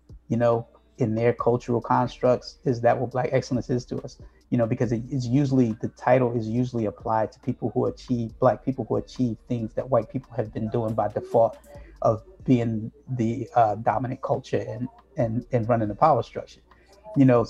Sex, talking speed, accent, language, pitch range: male, 190 wpm, American, English, 115-130 Hz